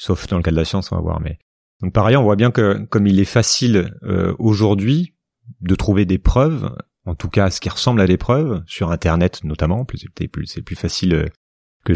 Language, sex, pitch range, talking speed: French, male, 90-115 Hz, 215 wpm